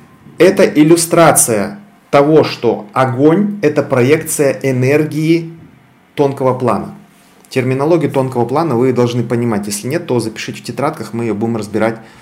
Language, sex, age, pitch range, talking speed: Russian, male, 30-49, 120-155 Hz, 130 wpm